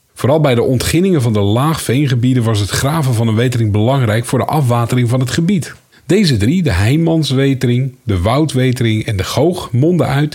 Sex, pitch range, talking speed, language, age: male, 115-145 Hz, 180 wpm, Dutch, 50-69